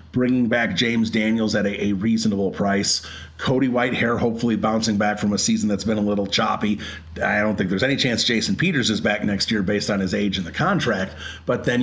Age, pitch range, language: 40-59, 100-120 Hz, English